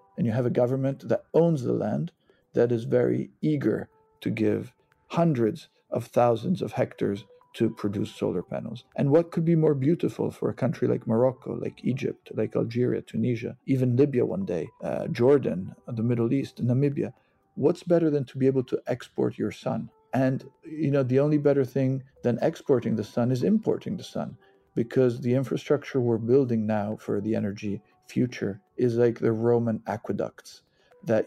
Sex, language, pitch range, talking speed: male, Italian, 115-140 Hz, 175 wpm